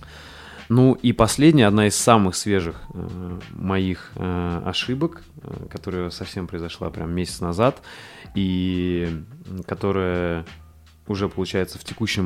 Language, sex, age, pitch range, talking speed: Russian, male, 20-39, 90-110 Hz, 115 wpm